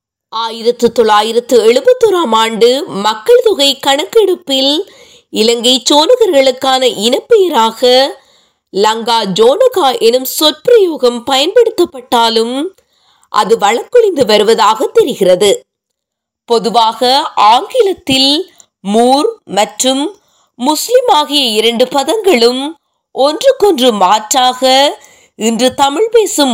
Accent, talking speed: native, 55 wpm